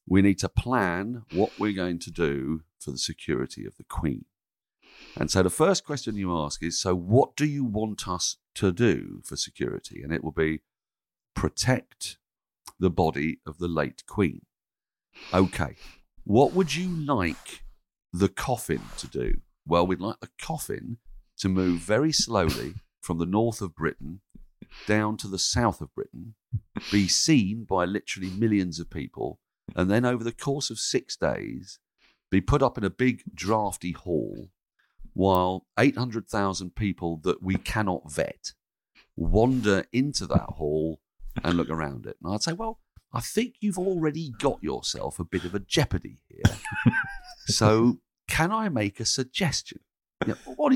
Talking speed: 160 wpm